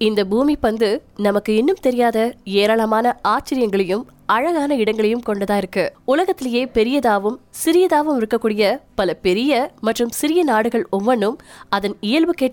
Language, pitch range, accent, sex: Tamil, 210-270 Hz, native, female